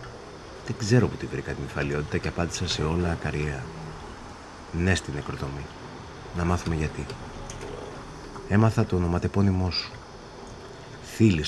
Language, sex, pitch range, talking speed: Greek, male, 80-115 Hz, 120 wpm